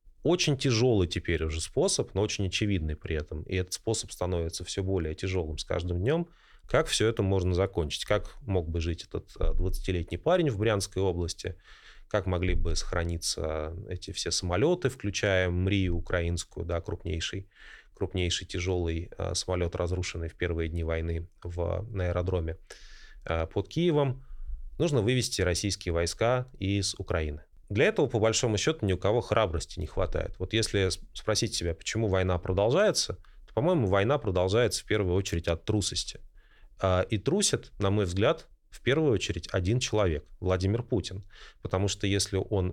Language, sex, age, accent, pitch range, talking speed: Russian, male, 20-39, native, 85-105 Hz, 155 wpm